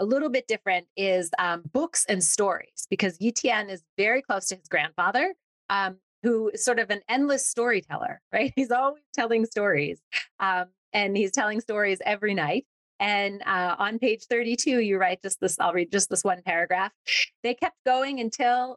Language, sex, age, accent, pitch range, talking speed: English, female, 30-49, American, 185-240 Hz, 180 wpm